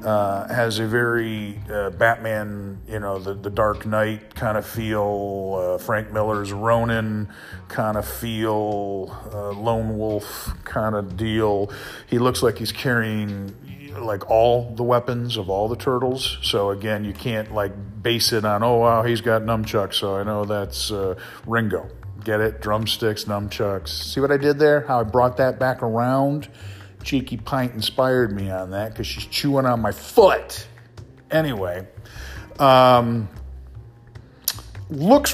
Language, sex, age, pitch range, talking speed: English, male, 40-59, 105-135 Hz, 155 wpm